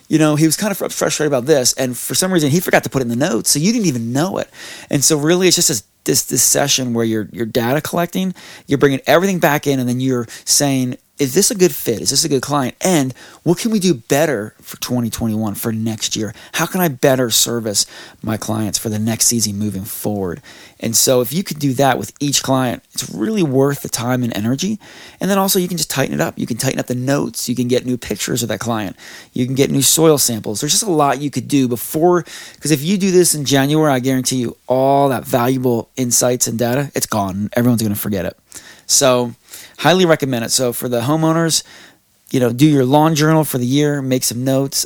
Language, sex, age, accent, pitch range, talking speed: English, male, 30-49, American, 120-145 Hz, 240 wpm